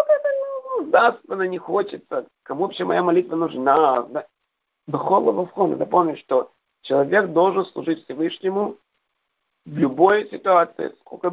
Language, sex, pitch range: Russian, male, 130-170 Hz